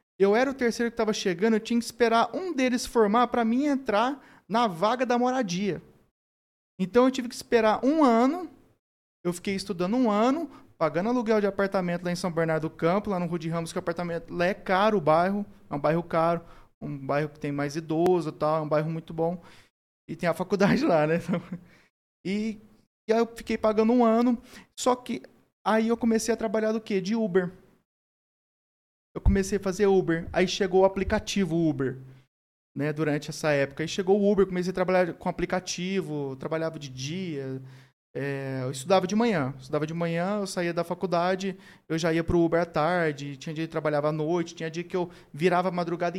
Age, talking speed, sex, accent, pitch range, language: 20-39, 205 wpm, male, Brazilian, 160-210 Hz, Portuguese